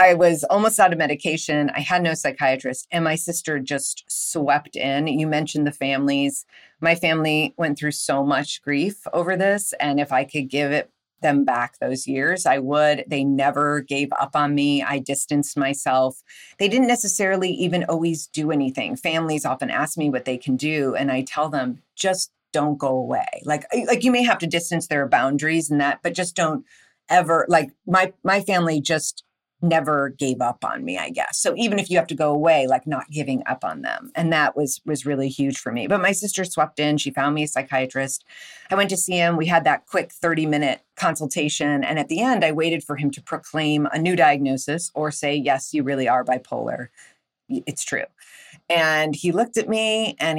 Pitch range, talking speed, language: 145-180 Hz, 205 wpm, English